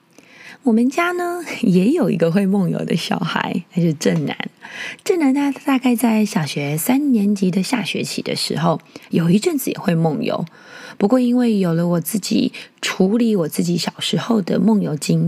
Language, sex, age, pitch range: Chinese, female, 20-39, 180-245 Hz